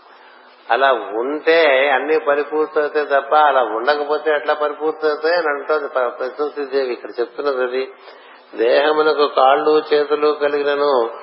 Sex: male